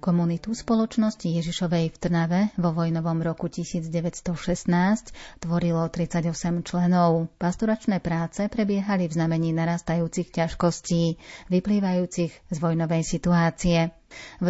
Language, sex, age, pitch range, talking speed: Slovak, female, 30-49, 165-180 Hz, 100 wpm